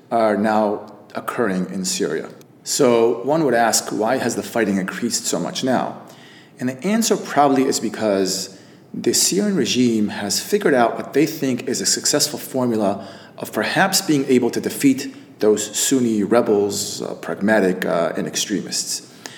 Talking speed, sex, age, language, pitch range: 155 wpm, male, 30-49, English, 105-135 Hz